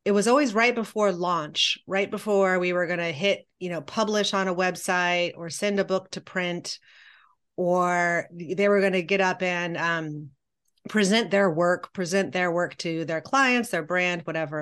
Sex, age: female, 30-49